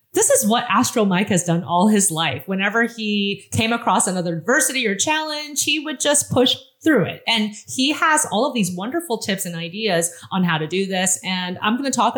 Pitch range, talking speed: 175-245 Hz, 215 wpm